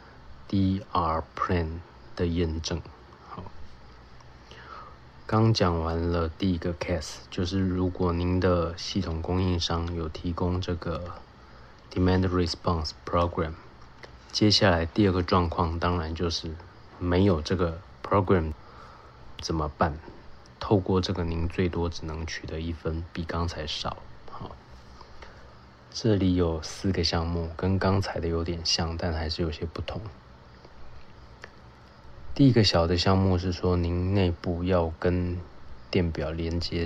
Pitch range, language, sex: 80-90 Hz, Chinese, male